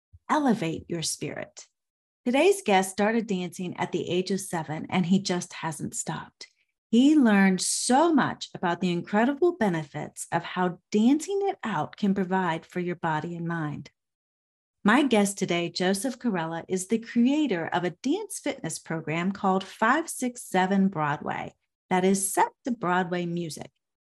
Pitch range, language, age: 180-250 Hz, English, 30-49